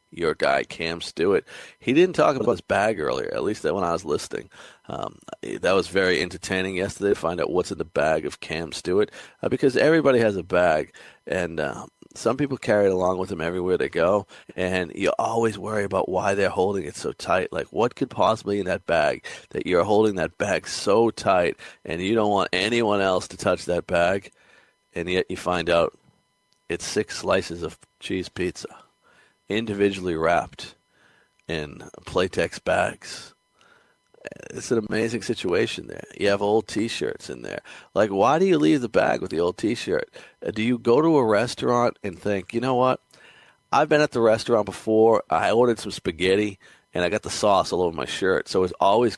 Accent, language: American, English